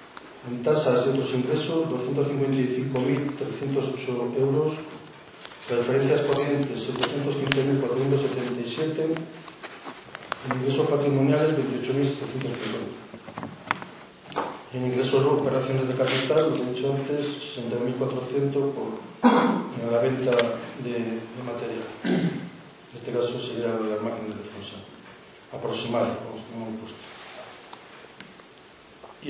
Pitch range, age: 125-145 Hz, 40-59